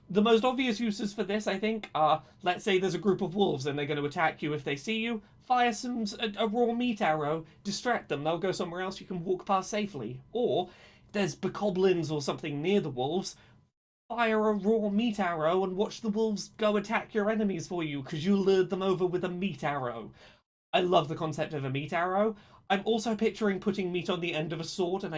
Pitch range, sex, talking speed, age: 150-210 Hz, male, 230 wpm, 30-49